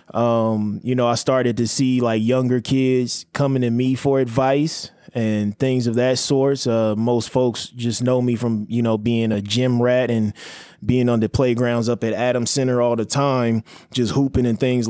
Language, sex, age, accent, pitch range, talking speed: English, male, 20-39, American, 110-130 Hz, 195 wpm